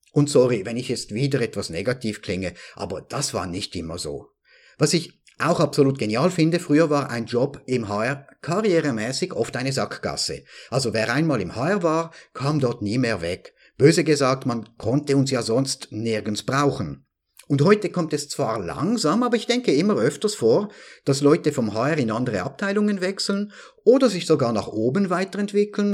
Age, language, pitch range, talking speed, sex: 50-69, German, 120-170 Hz, 180 wpm, male